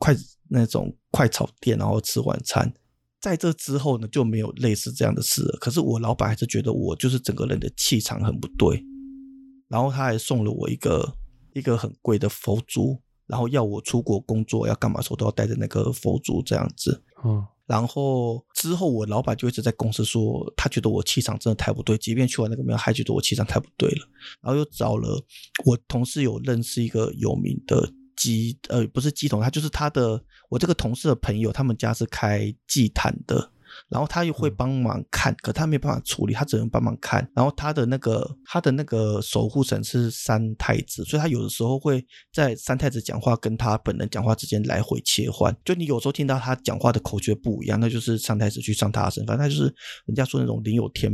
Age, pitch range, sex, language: 20-39, 110-135 Hz, male, Chinese